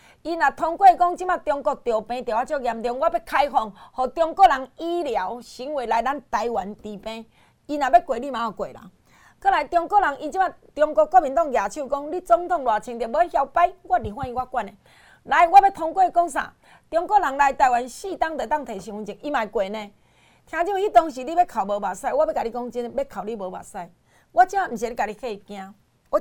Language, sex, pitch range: Chinese, female, 240-340 Hz